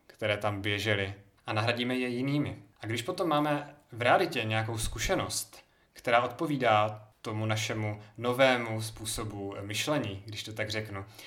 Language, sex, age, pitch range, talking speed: Czech, male, 20-39, 110-130 Hz, 140 wpm